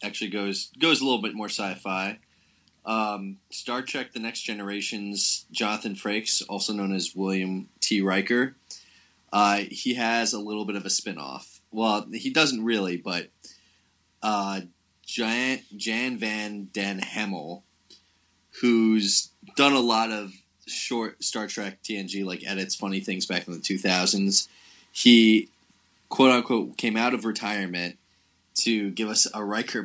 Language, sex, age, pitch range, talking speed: English, male, 20-39, 95-110 Hz, 140 wpm